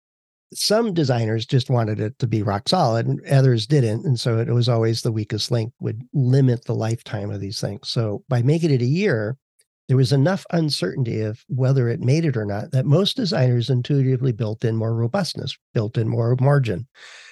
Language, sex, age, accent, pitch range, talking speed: English, male, 50-69, American, 120-145 Hz, 195 wpm